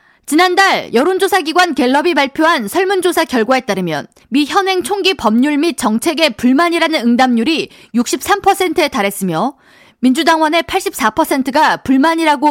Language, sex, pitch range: Korean, female, 250-350 Hz